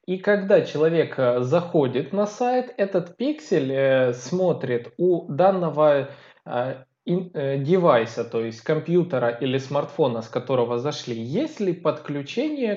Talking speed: 120 wpm